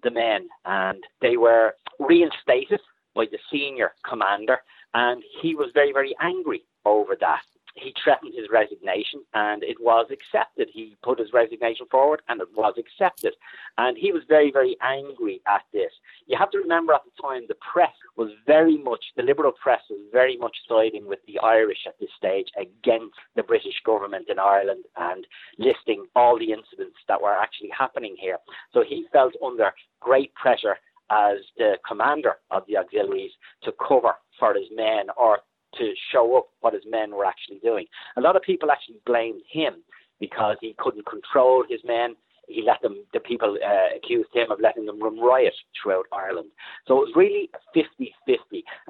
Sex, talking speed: male, 175 wpm